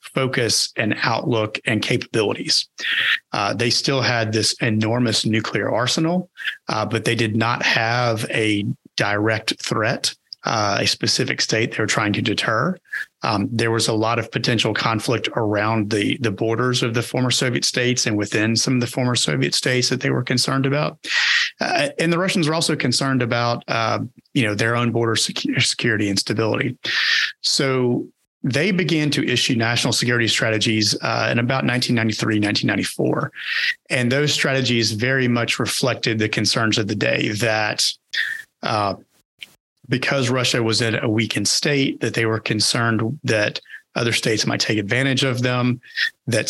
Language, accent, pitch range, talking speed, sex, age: English, American, 110-125 Hz, 160 wpm, male, 40-59